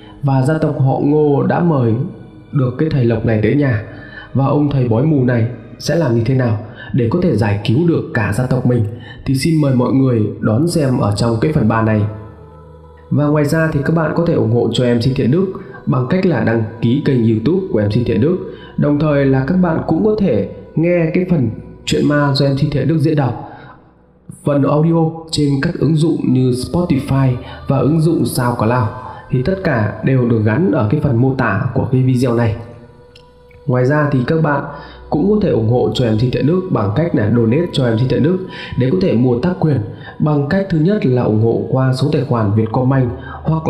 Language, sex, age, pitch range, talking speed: Vietnamese, male, 20-39, 115-155 Hz, 225 wpm